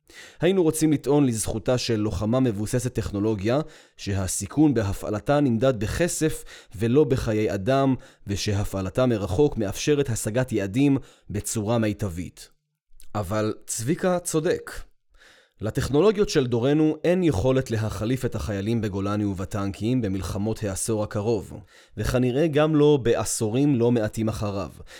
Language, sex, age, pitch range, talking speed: Hebrew, male, 20-39, 105-135 Hz, 110 wpm